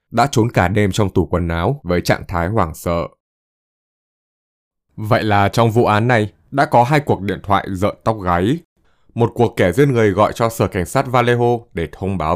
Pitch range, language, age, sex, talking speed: 85-115 Hz, Vietnamese, 20-39, male, 205 wpm